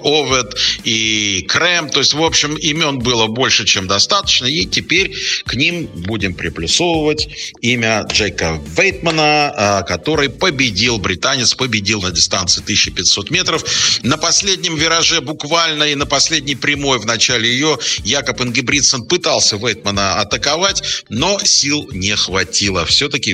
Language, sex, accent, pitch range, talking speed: Russian, male, native, 95-140 Hz, 130 wpm